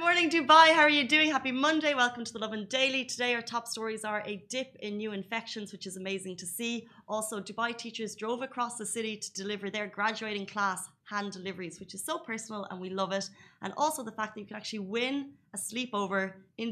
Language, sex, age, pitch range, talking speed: Arabic, female, 30-49, 185-230 Hz, 230 wpm